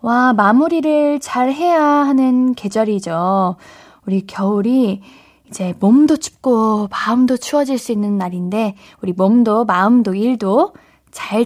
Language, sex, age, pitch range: Korean, female, 10-29, 200-300 Hz